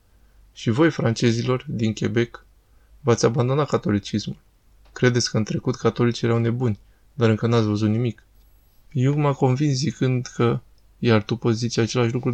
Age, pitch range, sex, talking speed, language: 20-39, 110-125 Hz, male, 150 wpm, Romanian